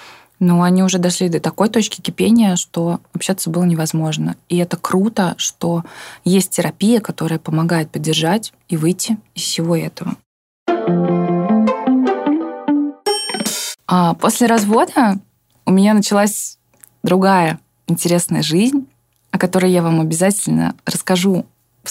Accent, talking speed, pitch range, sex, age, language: native, 115 wpm, 170-215 Hz, female, 20-39, Russian